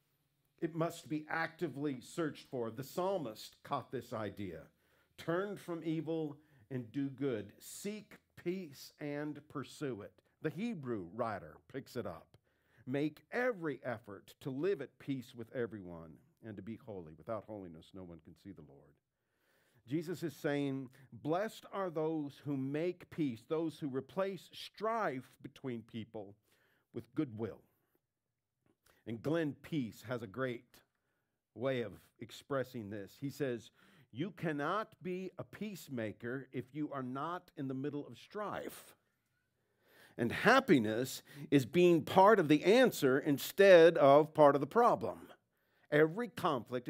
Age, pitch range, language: 50-69, 120-160 Hz, English